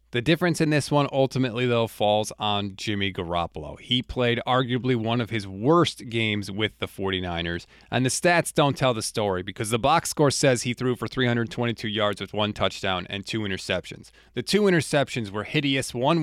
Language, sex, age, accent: English, male, 30-49, American